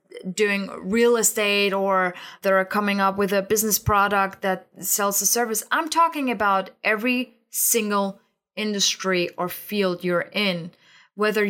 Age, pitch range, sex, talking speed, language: 20-39, 195-245 Hz, female, 135 wpm, English